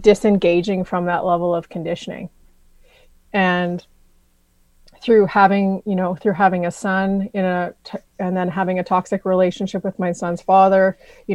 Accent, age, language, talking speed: American, 30-49, English, 155 wpm